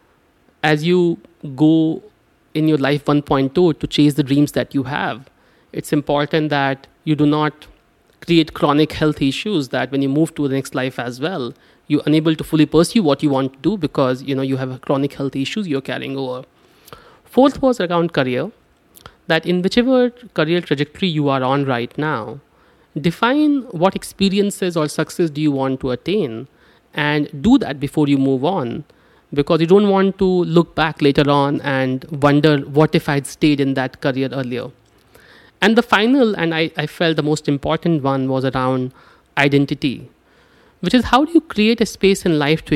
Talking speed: 180 wpm